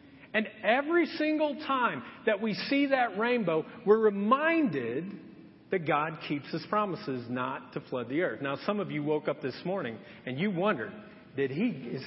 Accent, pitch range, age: American, 195-270 Hz, 40-59